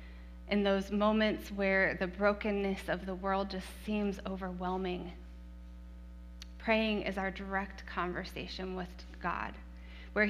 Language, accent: English, American